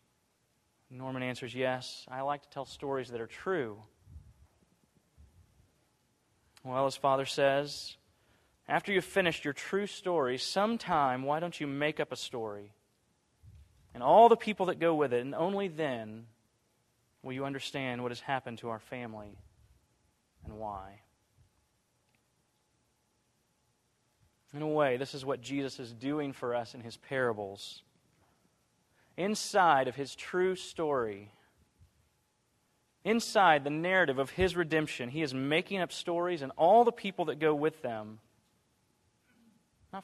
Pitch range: 110-150 Hz